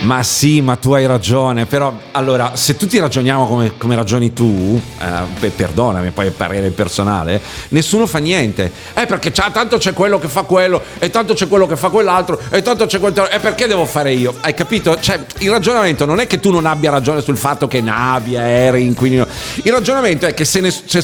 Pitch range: 130-185 Hz